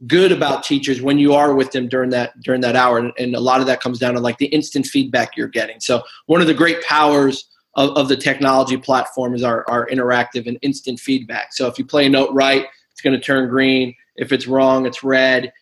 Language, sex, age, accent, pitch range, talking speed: English, male, 20-39, American, 130-145 Hz, 240 wpm